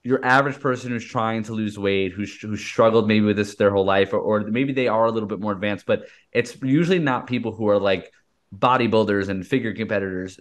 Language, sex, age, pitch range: English, male, 20-39, 100-120 Hz